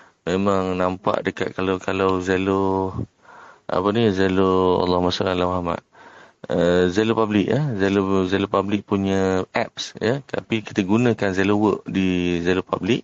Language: Malay